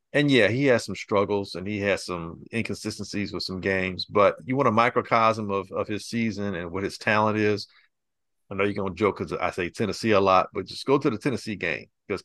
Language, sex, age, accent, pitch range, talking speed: English, male, 50-69, American, 100-135 Hz, 235 wpm